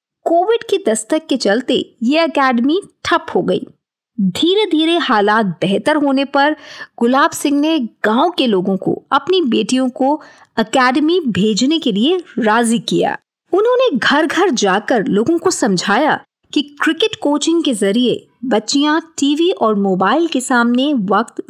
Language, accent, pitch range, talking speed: Hindi, native, 235-340 Hz, 145 wpm